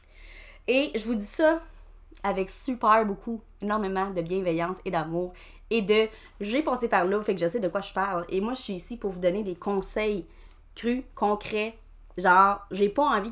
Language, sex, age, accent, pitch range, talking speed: French, female, 30-49, Canadian, 170-240 Hz, 205 wpm